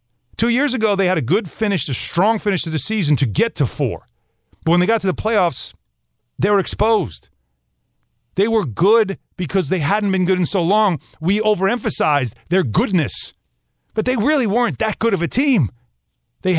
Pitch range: 125-210 Hz